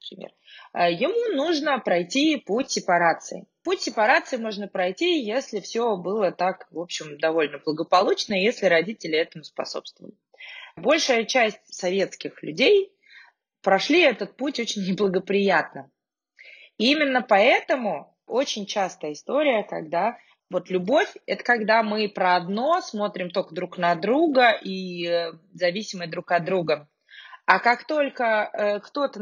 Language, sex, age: Russian, female, 20-39